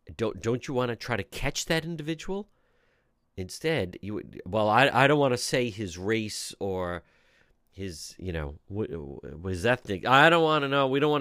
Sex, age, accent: male, 50-69, American